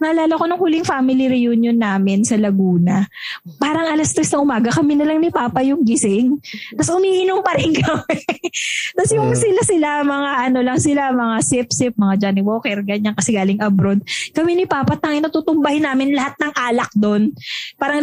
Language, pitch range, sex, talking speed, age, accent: English, 210-285 Hz, female, 175 wpm, 20-39, Filipino